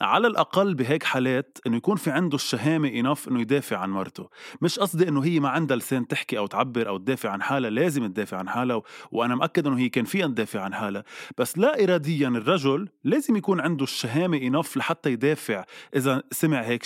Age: 20-39